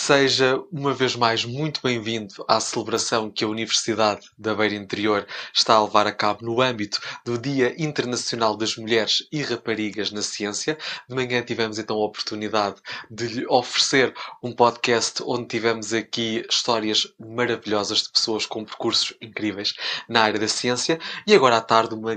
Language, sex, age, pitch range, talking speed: Portuguese, male, 20-39, 110-145 Hz, 160 wpm